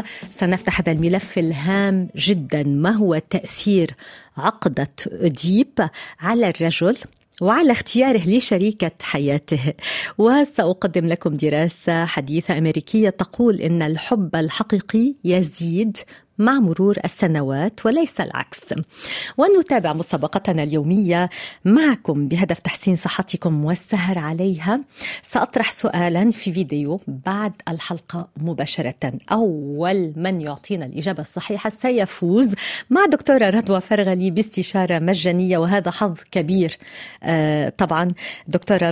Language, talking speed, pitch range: Arabic, 100 wpm, 165-205 Hz